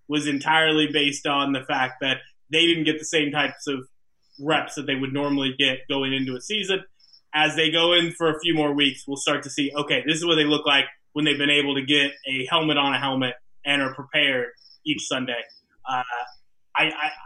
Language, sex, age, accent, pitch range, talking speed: English, male, 20-39, American, 140-170 Hz, 220 wpm